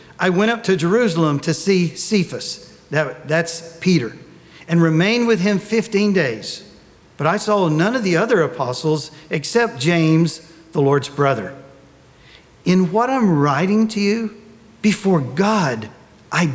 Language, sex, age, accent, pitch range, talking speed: English, male, 50-69, American, 145-195 Hz, 140 wpm